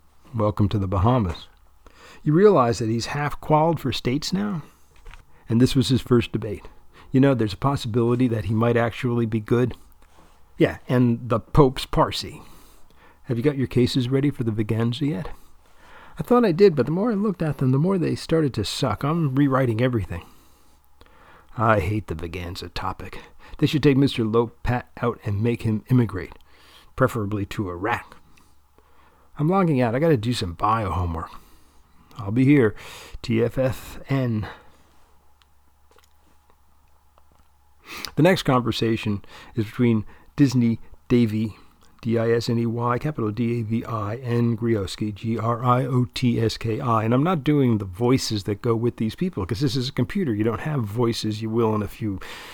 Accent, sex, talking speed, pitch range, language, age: American, male, 155 wpm, 90-125 Hz, English, 50-69